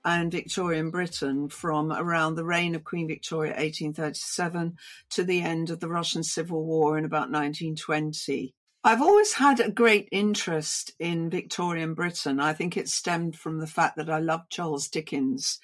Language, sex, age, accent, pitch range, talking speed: English, female, 60-79, British, 150-180 Hz, 165 wpm